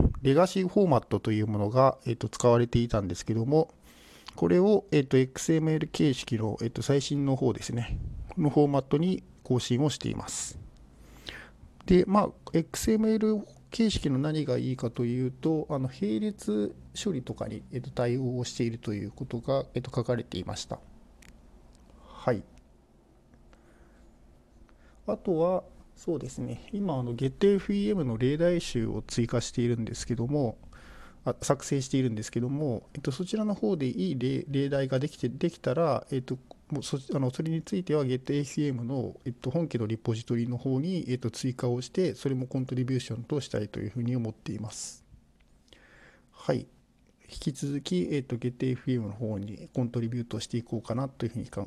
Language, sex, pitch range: Japanese, male, 115-150 Hz